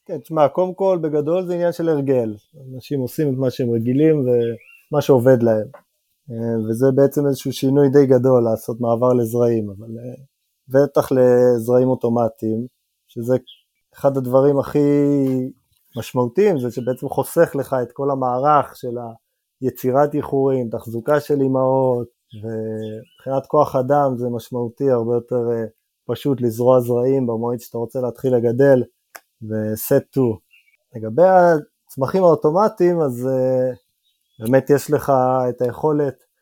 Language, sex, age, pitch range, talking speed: Hebrew, male, 20-39, 120-145 Hz, 125 wpm